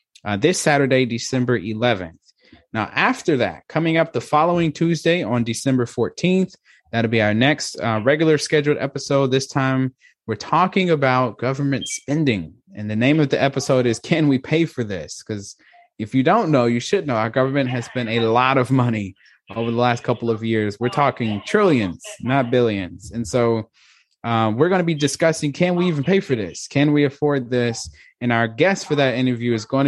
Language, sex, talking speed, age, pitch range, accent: English, male, 195 wpm, 20-39, 115-145 Hz, American